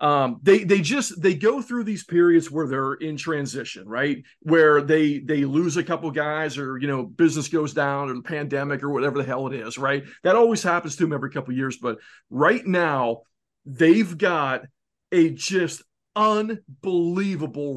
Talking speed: 180 wpm